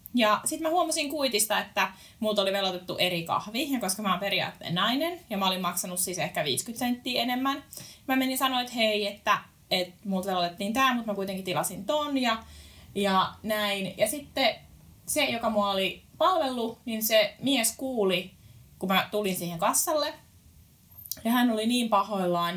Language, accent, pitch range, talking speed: Finnish, native, 185-255 Hz, 175 wpm